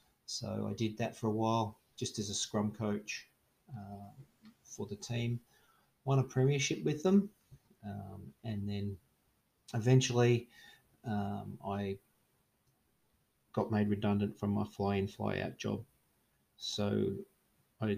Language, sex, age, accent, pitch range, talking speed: English, male, 30-49, Australian, 100-110 Hz, 125 wpm